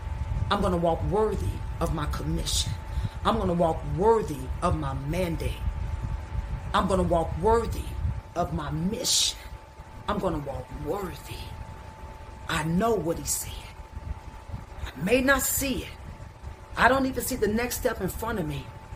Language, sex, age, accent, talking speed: English, female, 40-59, American, 145 wpm